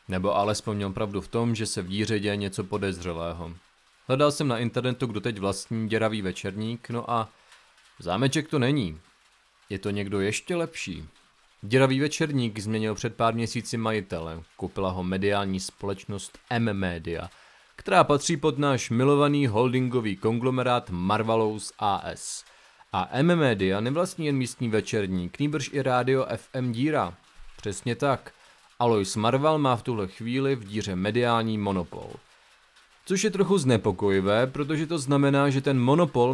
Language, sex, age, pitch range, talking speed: Czech, male, 30-49, 100-125 Hz, 145 wpm